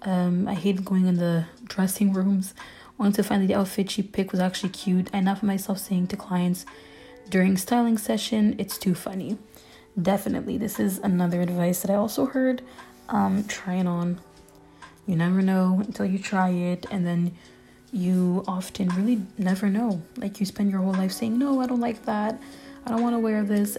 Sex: female